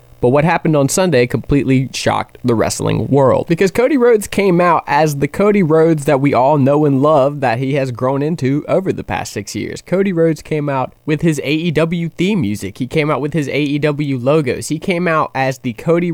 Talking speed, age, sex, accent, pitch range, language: 210 wpm, 20-39, male, American, 115-150 Hz, English